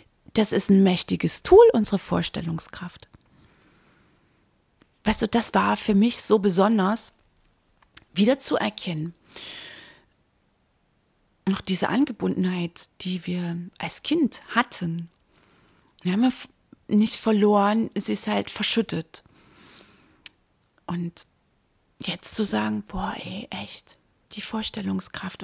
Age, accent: 30-49, German